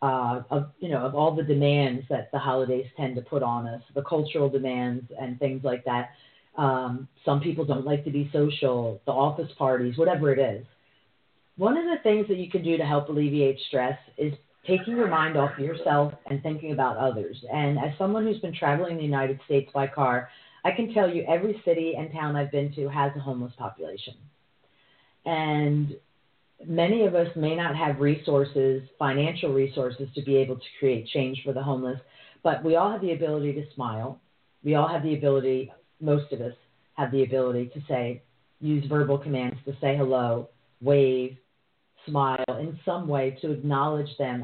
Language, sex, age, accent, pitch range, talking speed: English, female, 40-59, American, 130-155 Hz, 190 wpm